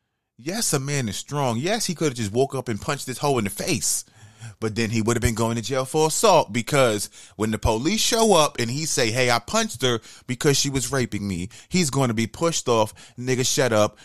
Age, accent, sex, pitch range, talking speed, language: 30-49, American, male, 110-145 Hz, 245 wpm, English